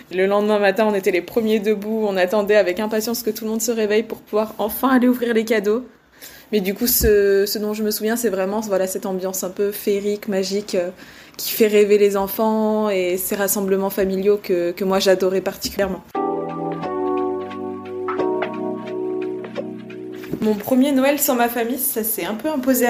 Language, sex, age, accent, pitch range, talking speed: French, female, 20-39, French, 195-235 Hz, 180 wpm